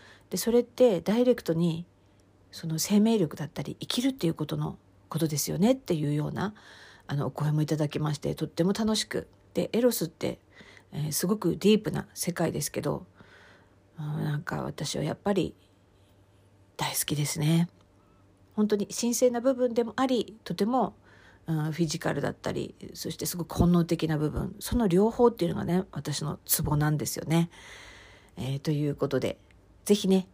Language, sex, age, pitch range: Japanese, female, 50-69, 140-195 Hz